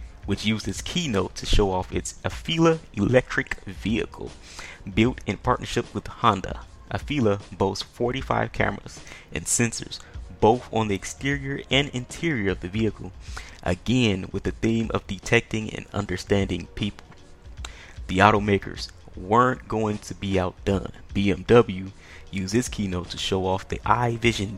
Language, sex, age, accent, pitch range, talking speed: English, male, 20-39, American, 90-115 Hz, 135 wpm